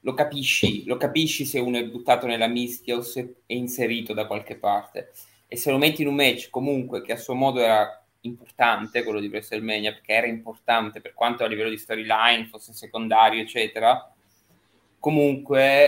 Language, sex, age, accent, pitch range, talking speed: Italian, male, 20-39, native, 105-125 Hz, 180 wpm